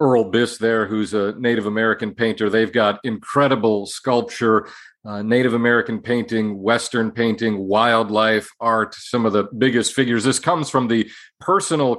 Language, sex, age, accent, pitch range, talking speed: English, male, 40-59, American, 110-125 Hz, 150 wpm